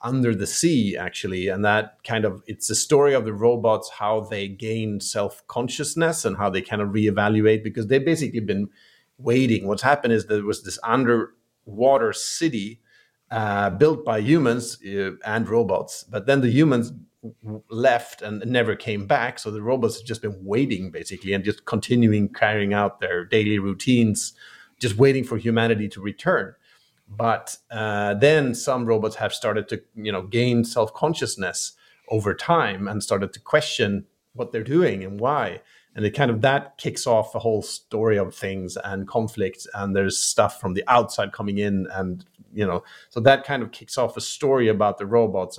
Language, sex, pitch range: English, male, 100-120 Hz